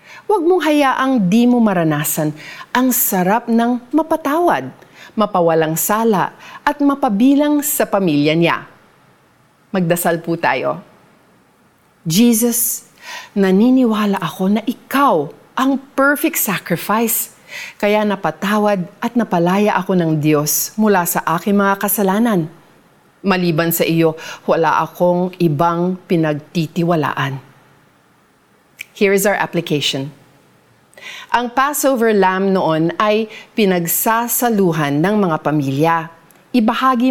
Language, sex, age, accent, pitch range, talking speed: Filipino, female, 40-59, native, 165-245 Hz, 100 wpm